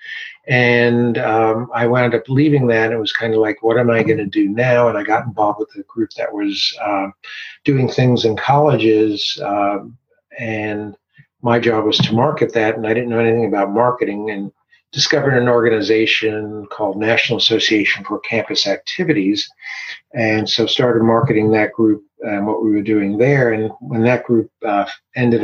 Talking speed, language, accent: 180 wpm, English, American